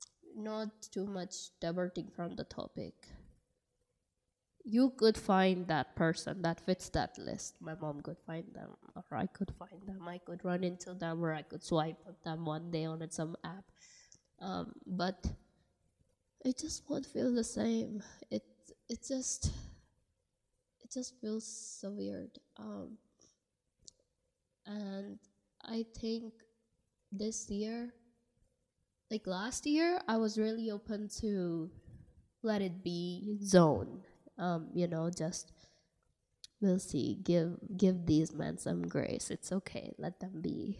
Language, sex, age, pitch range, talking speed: English, female, 20-39, 175-230 Hz, 135 wpm